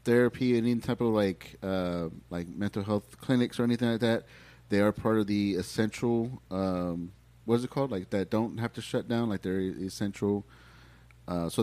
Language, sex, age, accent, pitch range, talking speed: English, male, 30-49, American, 85-110 Hz, 190 wpm